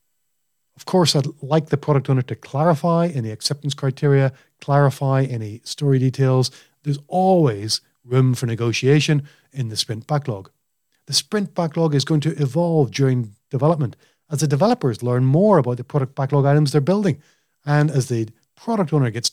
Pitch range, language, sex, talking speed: 130-165 Hz, English, male, 160 wpm